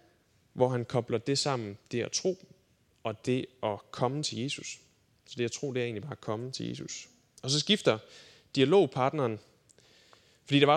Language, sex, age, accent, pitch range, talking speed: Danish, male, 20-39, native, 120-155 Hz, 185 wpm